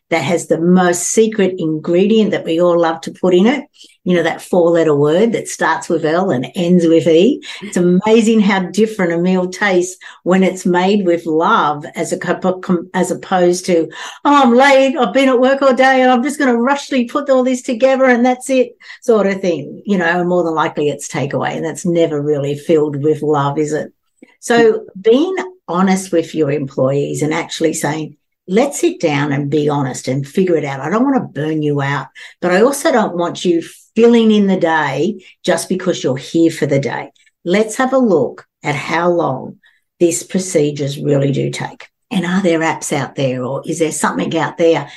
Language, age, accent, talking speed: English, 60-79, Australian, 205 wpm